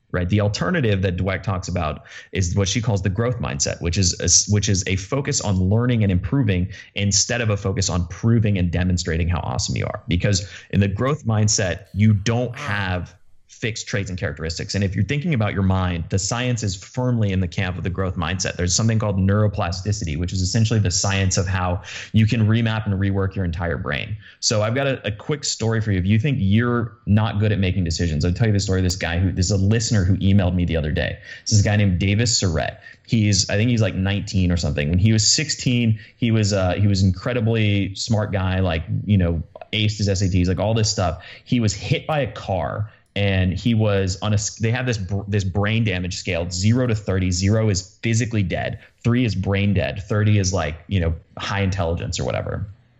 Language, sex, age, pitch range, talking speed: English, male, 30-49, 95-110 Hz, 225 wpm